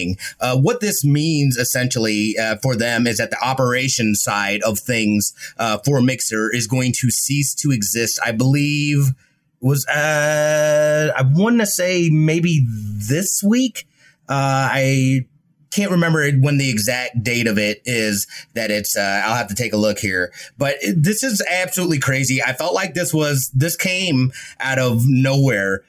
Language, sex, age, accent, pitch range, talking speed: English, male, 30-49, American, 120-160 Hz, 165 wpm